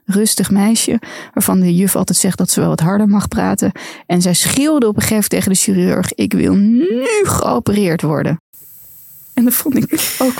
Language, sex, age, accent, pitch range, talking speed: Dutch, female, 20-39, Dutch, 175-225 Hz, 190 wpm